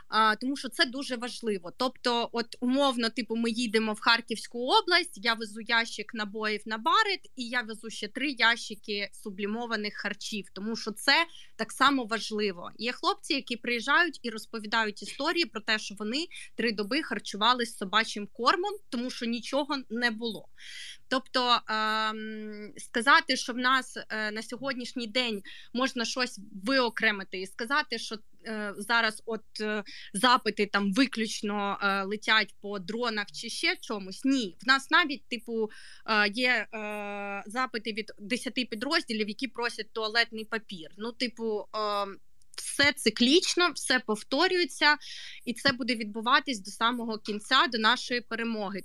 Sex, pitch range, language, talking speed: female, 215-260 Hz, Ukrainian, 140 wpm